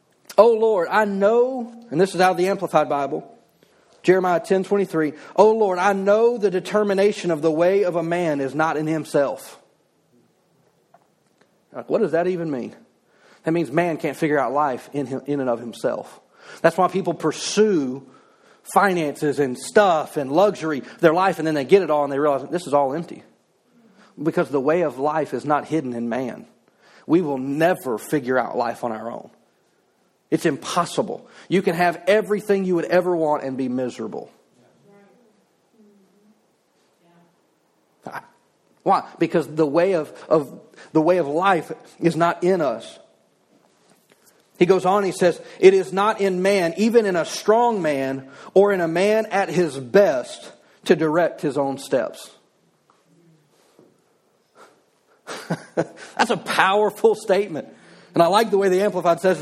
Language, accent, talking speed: English, American, 155 wpm